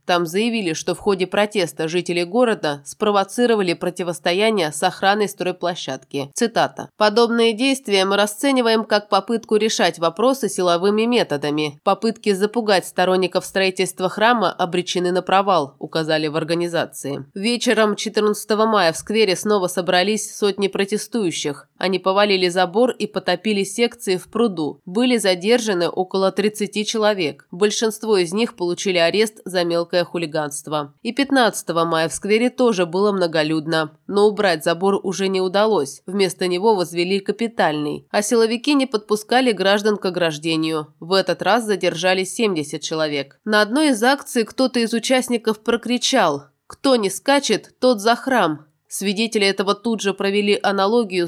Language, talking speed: Russian, 135 wpm